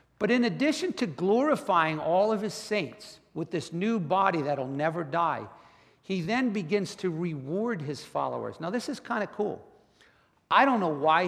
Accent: American